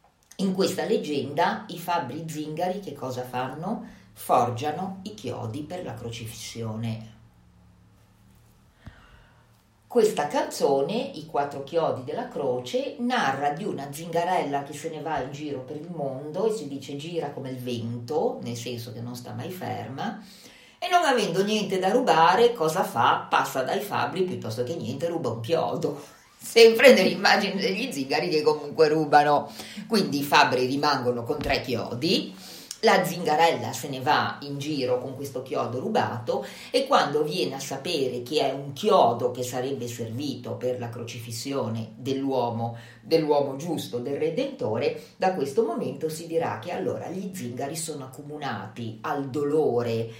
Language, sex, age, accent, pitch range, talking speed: Italian, female, 40-59, native, 125-170 Hz, 150 wpm